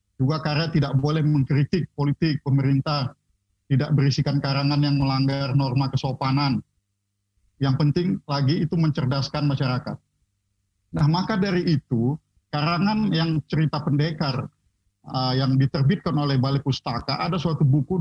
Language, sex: Indonesian, male